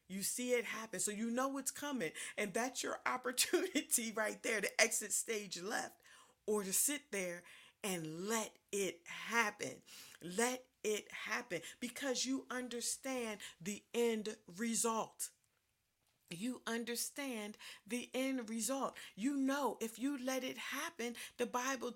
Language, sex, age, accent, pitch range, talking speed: English, female, 40-59, American, 205-265 Hz, 135 wpm